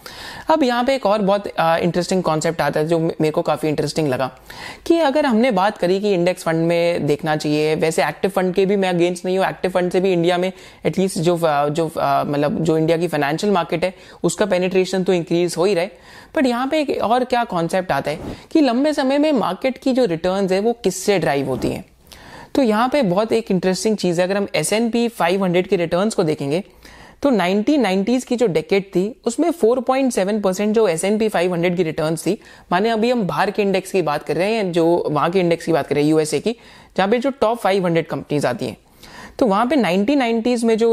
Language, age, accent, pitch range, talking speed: Hindi, 30-49, native, 170-225 Hz, 155 wpm